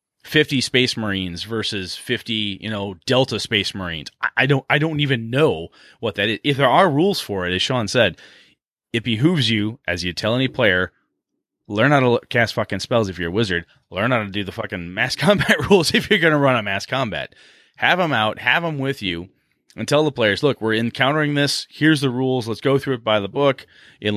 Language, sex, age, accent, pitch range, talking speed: English, male, 30-49, American, 95-135 Hz, 220 wpm